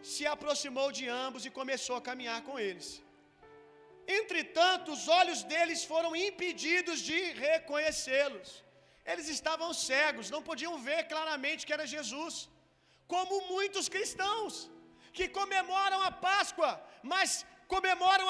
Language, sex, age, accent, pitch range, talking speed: Gujarati, male, 40-59, Brazilian, 335-390 Hz, 120 wpm